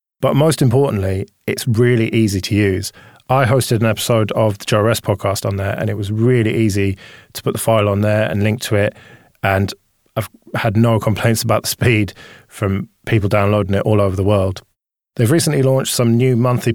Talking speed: 195 wpm